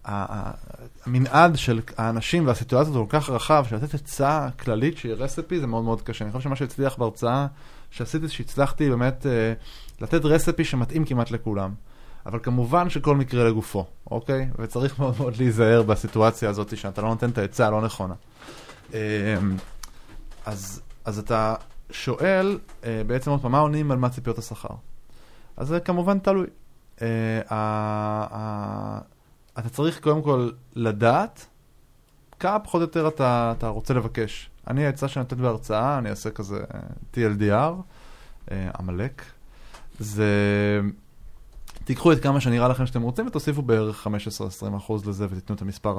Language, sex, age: Hebrew, male, 20-39